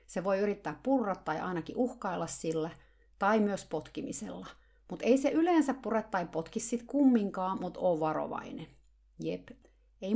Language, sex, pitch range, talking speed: Finnish, female, 155-230 Hz, 140 wpm